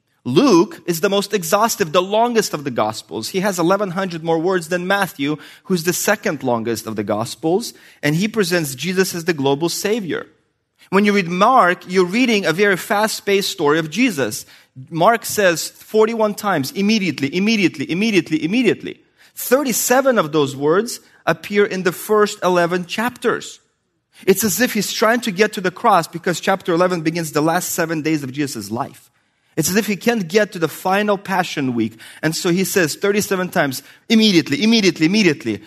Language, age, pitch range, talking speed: English, 30-49, 150-205 Hz, 175 wpm